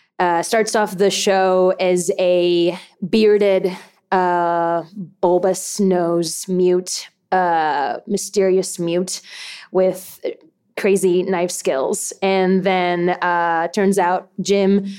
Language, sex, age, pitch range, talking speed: English, female, 20-39, 180-215 Hz, 100 wpm